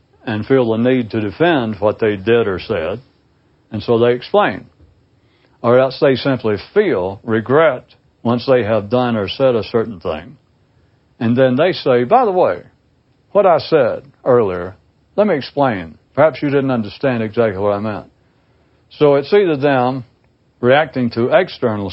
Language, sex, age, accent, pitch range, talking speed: English, male, 60-79, American, 105-135 Hz, 160 wpm